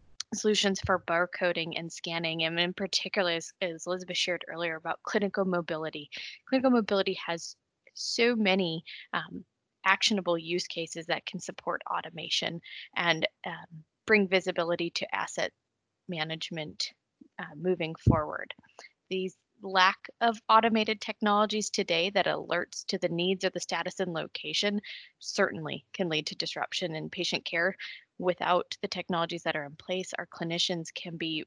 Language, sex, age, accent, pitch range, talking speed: English, female, 20-39, American, 165-190 Hz, 140 wpm